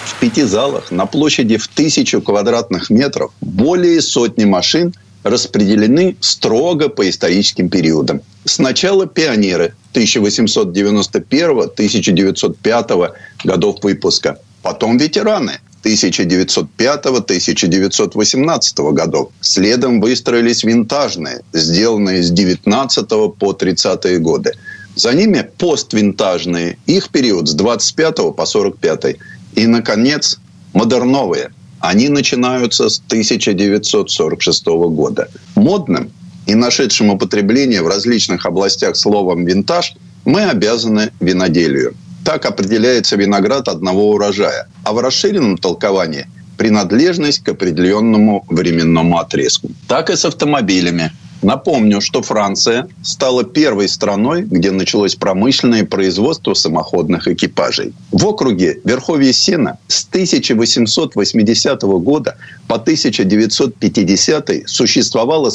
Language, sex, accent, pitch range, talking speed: Russian, male, native, 95-120 Hz, 95 wpm